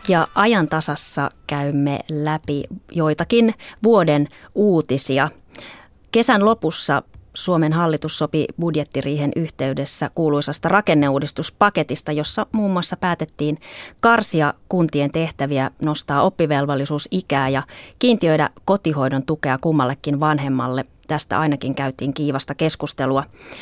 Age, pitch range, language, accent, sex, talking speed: 30-49, 140-170 Hz, Finnish, native, female, 95 wpm